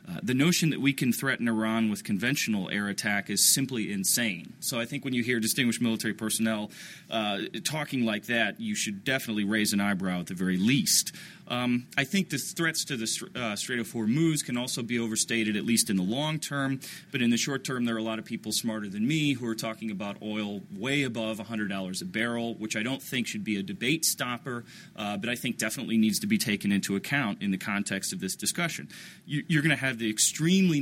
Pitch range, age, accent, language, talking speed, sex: 105-135 Hz, 30-49, American, English, 225 wpm, male